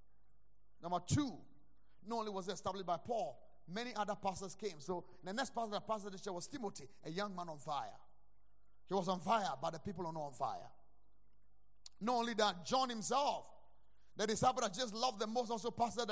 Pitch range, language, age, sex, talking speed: 200-290 Hz, English, 30-49, male, 195 wpm